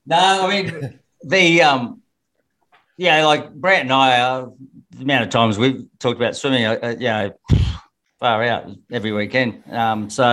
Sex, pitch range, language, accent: male, 110-135 Hz, English, Australian